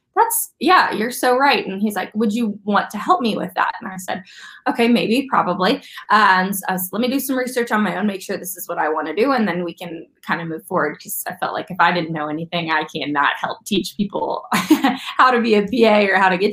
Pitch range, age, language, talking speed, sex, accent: 180-230 Hz, 20-39, English, 260 wpm, female, American